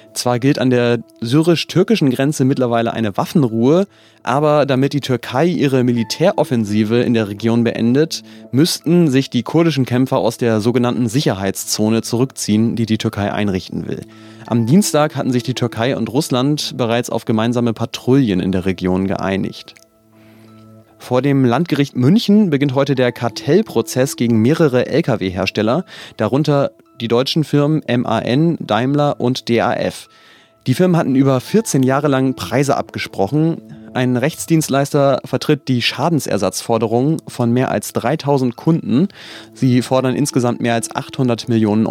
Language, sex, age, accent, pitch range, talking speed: German, male, 30-49, German, 115-140 Hz, 135 wpm